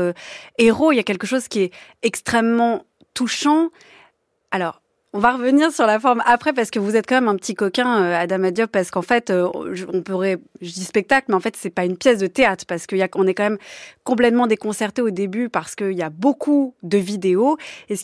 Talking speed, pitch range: 215 wpm, 195-255 Hz